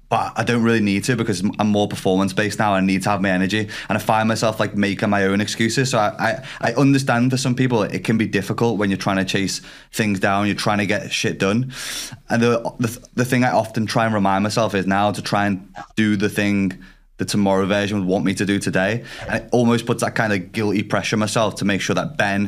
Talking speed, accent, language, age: 255 wpm, British, English, 20-39